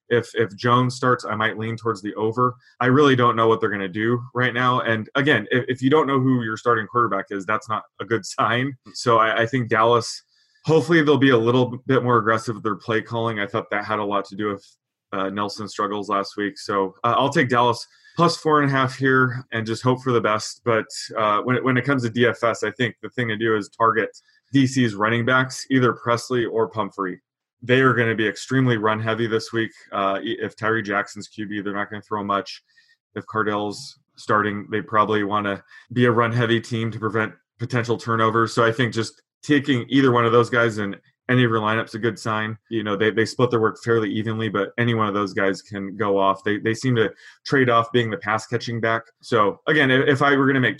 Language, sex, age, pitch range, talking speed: English, male, 20-39, 105-125 Hz, 235 wpm